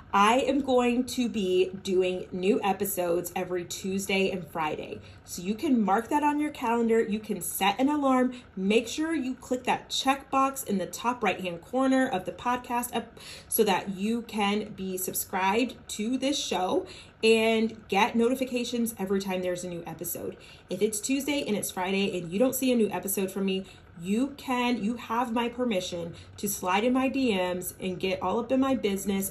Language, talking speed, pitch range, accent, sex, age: English, 185 wpm, 185-250 Hz, American, female, 30-49